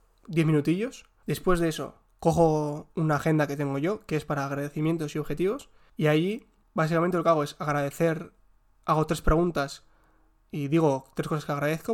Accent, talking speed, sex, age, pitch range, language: Spanish, 170 wpm, male, 20-39, 145-180 Hz, Spanish